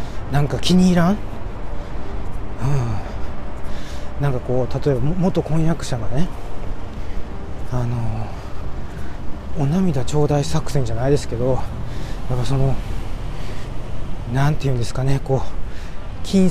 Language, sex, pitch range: Japanese, male, 100-145 Hz